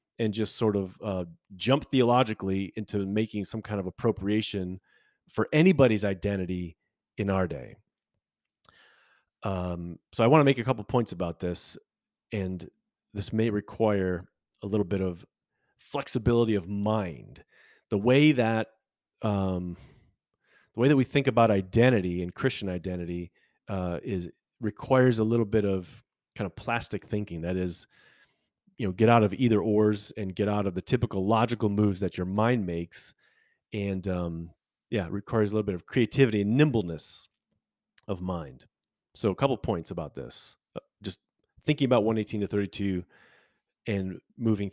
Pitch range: 95-120 Hz